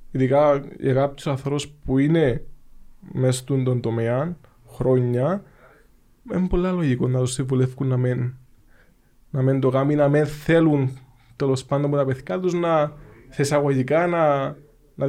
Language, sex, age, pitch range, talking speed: Greek, male, 20-39, 120-145 Hz, 135 wpm